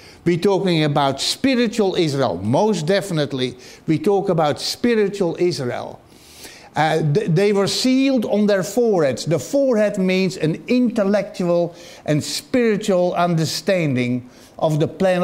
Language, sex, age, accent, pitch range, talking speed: English, male, 60-79, Dutch, 150-195 Hz, 120 wpm